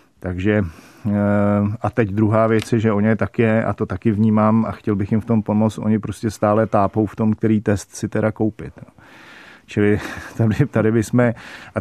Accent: native